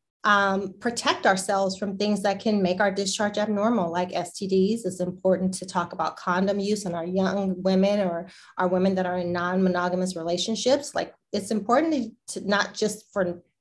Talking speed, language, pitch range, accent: 175 wpm, English, 190-230 Hz, American